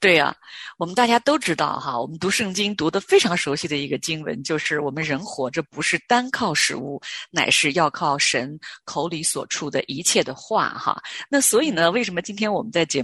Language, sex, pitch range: Chinese, female, 155-235 Hz